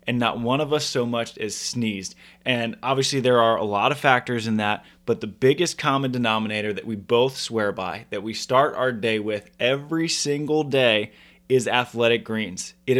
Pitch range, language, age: 110-135 Hz, English, 20-39